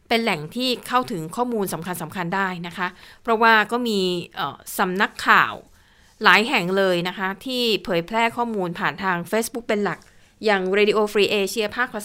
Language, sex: Thai, female